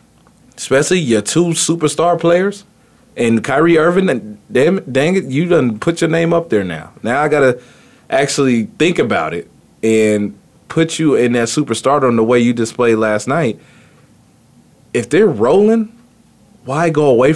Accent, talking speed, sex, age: American, 165 wpm, male, 20-39